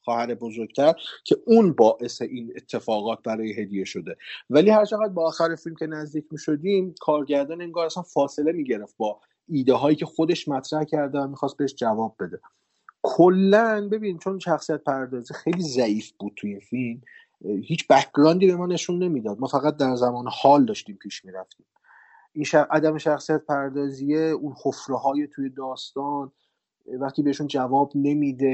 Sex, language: male, Persian